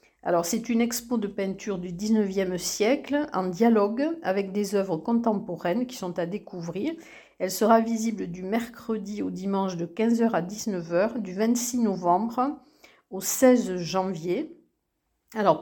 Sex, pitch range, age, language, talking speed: female, 185-245 Hz, 50-69, French, 140 wpm